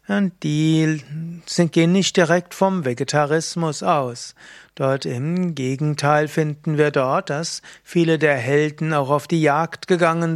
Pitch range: 145-175 Hz